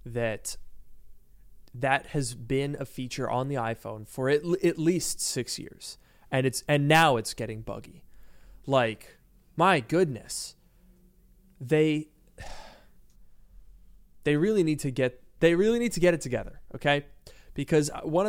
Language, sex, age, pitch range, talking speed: English, male, 20-39, 125-165 Hz, 140 wpm